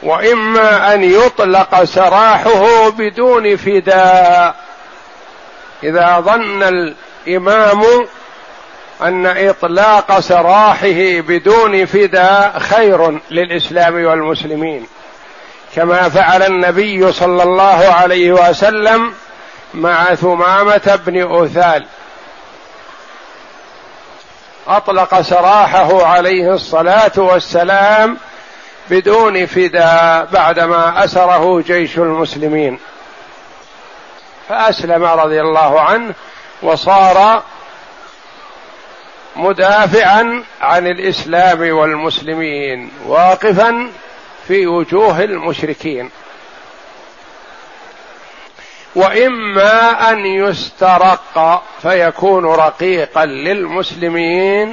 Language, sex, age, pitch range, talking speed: Arabic, male, 50-69, 170-205 Hz, 65 wpm